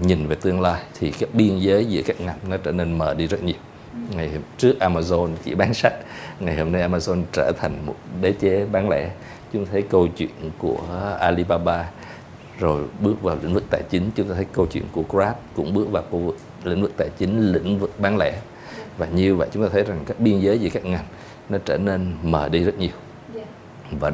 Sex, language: male, Vietnamese